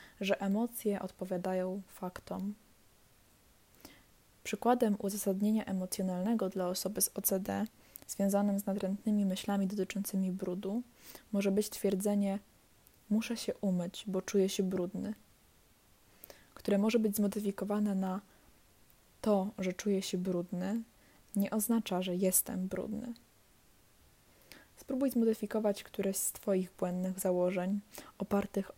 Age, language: 10-29, Polish